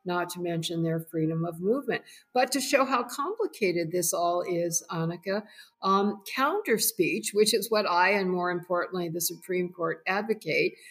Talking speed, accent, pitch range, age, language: 165 wpm, American, 175-230 Hz, 50-69, English